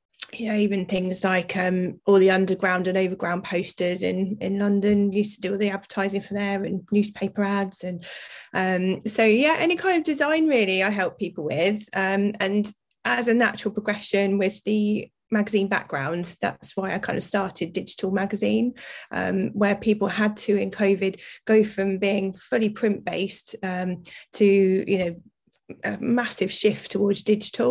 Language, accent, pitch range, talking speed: English, British, 190-210 Hz, 170 wpm